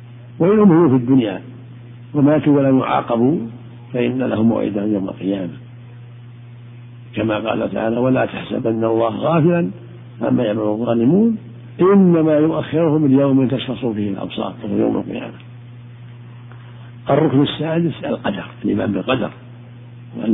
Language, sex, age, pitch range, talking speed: Arabic, male, 60-79, 120-140 Hz, 105 wpm